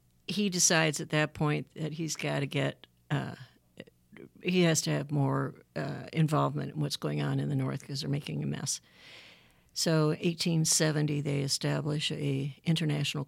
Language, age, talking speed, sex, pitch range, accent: English, 60-79, 165 wpm, female, 140-165 Hz, American